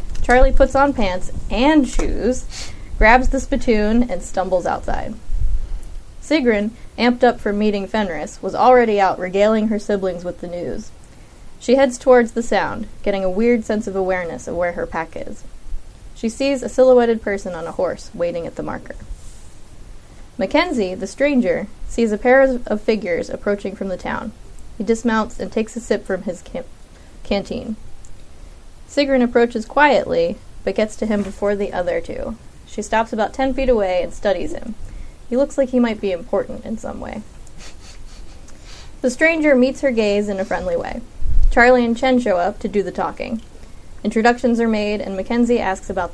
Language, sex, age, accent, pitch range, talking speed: English, female, 20-39, American, 200-255 Hz, 170 wpm